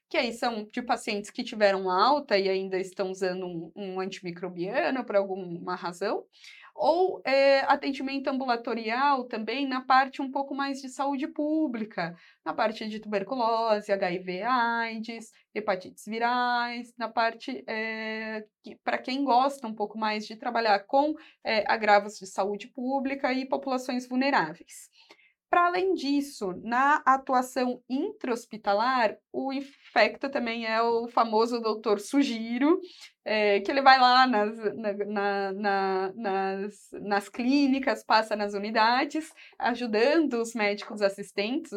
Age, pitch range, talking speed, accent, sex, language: 20-39, 200-270 Hz, 120 wpm, Brazilian, female, Portuguese